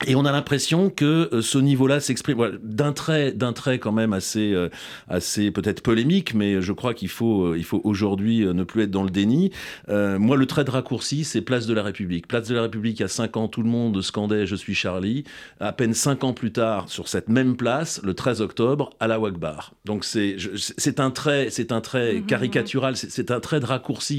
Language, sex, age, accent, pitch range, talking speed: French, male, 40-59, French, 100-130 Hz, 240 wpm